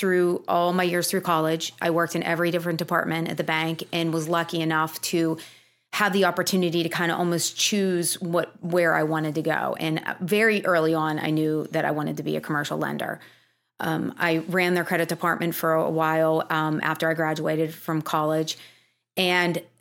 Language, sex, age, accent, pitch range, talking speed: English, female, 30-49, American, 160-185 Hz, 195 wpm